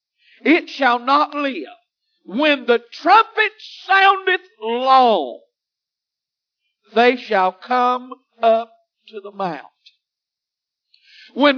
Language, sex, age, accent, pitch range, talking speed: English, male, 50-69, American, 255-390 Hz, 90 wpm